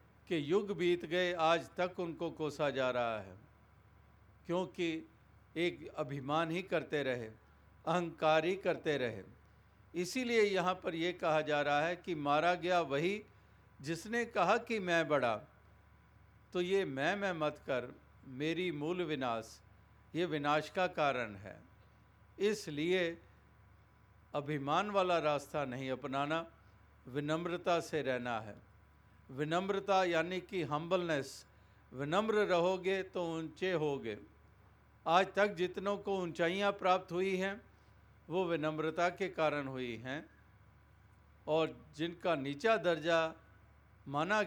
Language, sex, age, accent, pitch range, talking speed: Hindi, male, 50-69, native, 110-180 Hz, 120 wpm